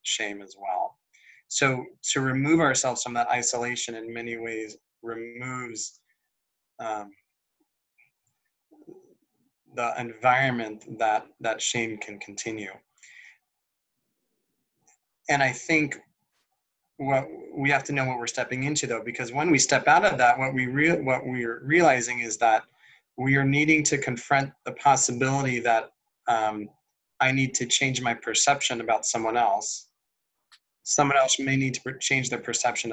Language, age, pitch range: English, 20-39, 115-140 Hz